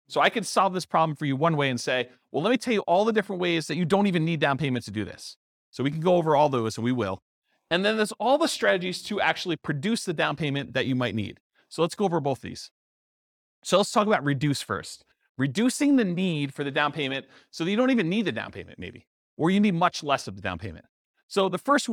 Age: 40-59